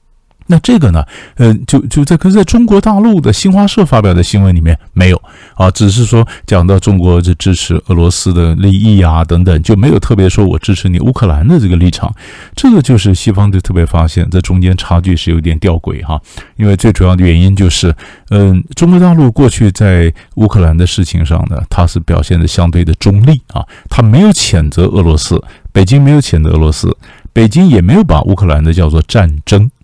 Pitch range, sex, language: 85-120 Hz, male, Chinese